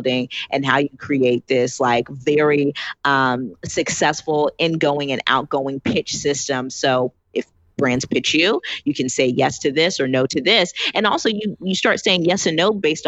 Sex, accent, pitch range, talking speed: female, American, 130-150 Hz, 180 wpm